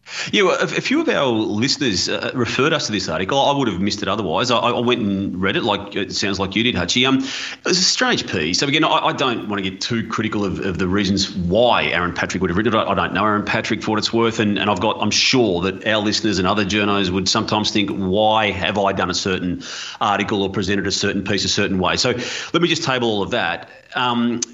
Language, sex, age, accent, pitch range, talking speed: English, male, 30-49, Australian, 95-120 Hz, 265 wpm